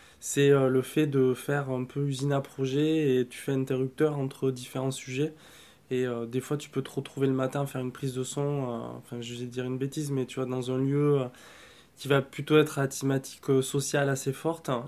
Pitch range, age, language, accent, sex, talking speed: 130-140 Hz, 20-39, French, French, male, 230 wpm